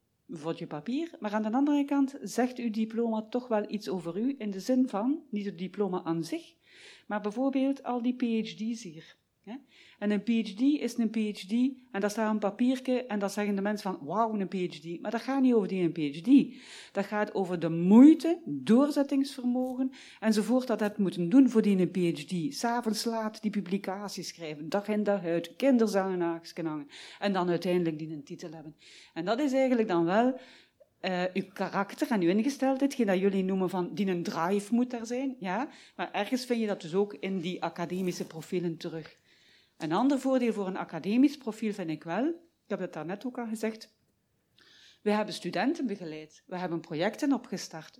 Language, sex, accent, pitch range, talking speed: Dutch, female, Dutch, 185-245 Hz, 195 wpm